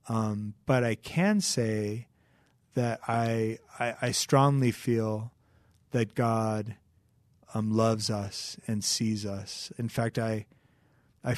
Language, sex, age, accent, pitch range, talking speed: English, male, 30-49, American, 110-130 Hz, 120 wpm